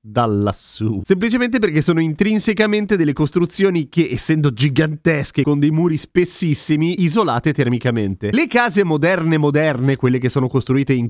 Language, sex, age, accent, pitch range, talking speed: Italian, male, 30-49, native, 120-165 Hz, 140 wpm